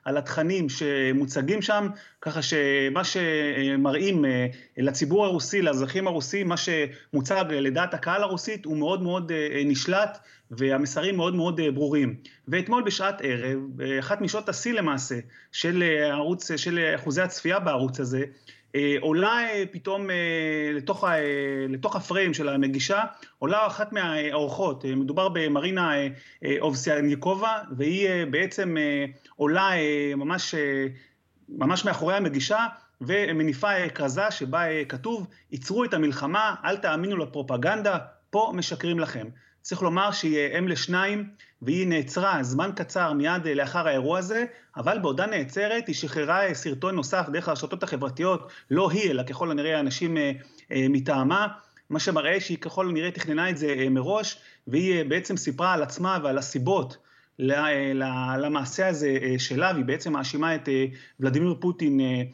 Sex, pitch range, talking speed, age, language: male, 140-185 Hz, 120 wpm, 30-49, Hebrew